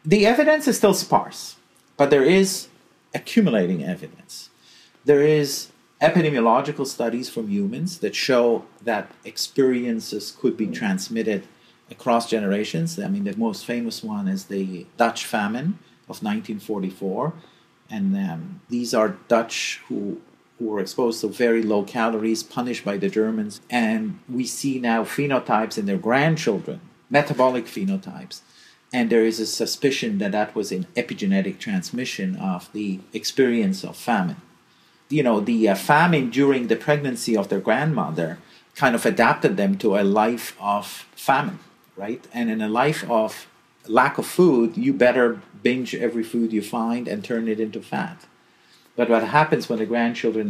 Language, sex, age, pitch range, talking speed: English, male, 40-59, 110-165 Hz, 150 wpm